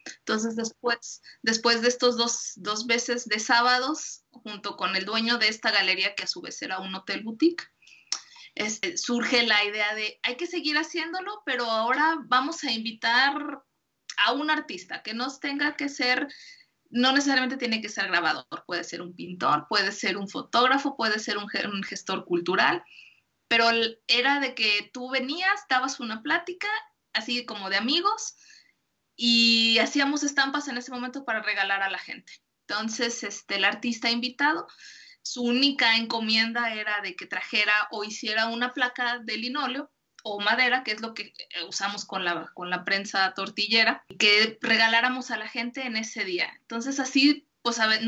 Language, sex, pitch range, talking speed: English, female, 215-275 Hz, 170 wpm